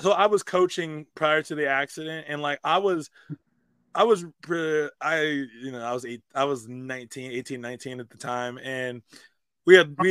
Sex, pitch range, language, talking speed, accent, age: male, 125-155 Hz, English, 190 wpm, American, 20-39